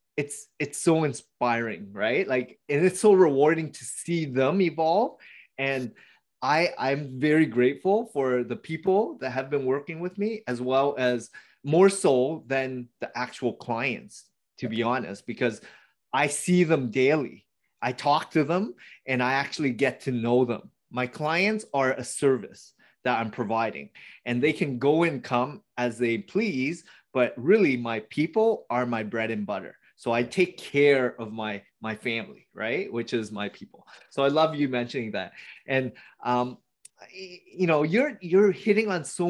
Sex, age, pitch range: male, 30-49, 125-175 Hz